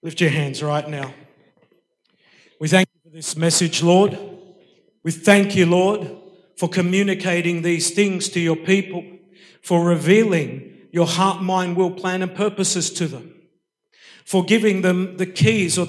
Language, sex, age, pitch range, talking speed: English, male, 50-69, 170-200 Hz, 150 wpm